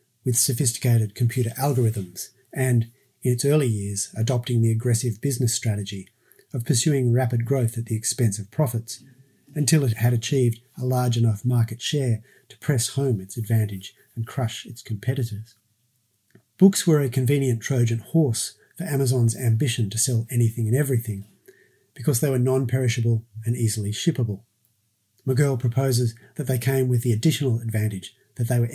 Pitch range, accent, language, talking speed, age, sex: 115-130 Hz, Australian, English, 155 wpm, 40-59, male